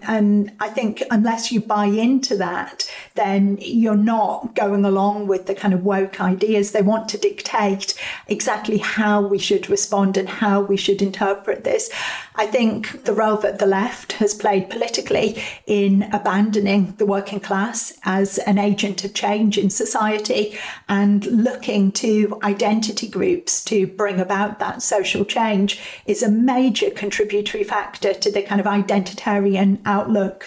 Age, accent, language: 40-59, British, English